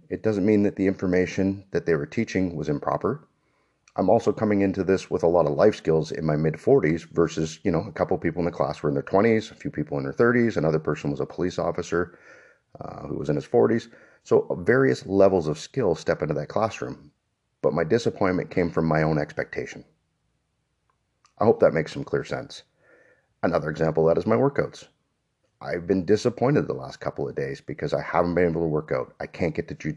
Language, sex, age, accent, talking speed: English, male, 40-59, American, 220 wpm